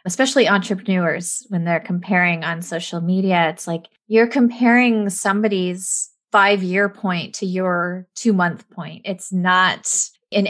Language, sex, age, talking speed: English, female, 20-39, 125 wpm